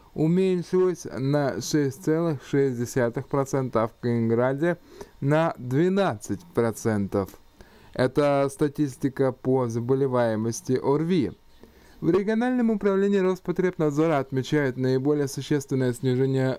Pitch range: 130-160 Hz